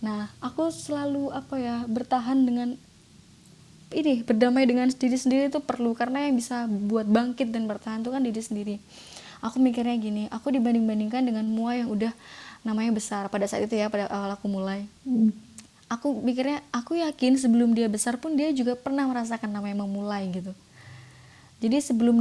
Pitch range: 215-255 Hz